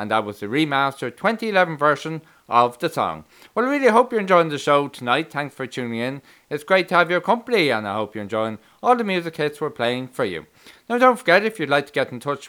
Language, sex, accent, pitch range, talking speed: English, male, Irish, 125-180 Hz, 250 wpm